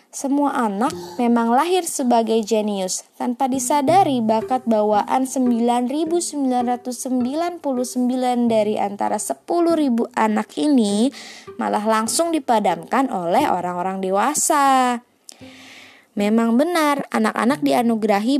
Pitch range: 205-260 Hz